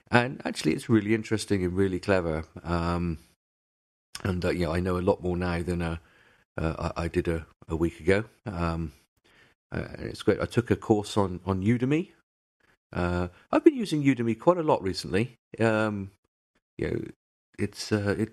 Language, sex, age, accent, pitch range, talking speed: English, male, 50-69, British, 85-110 Hz, 180 wpm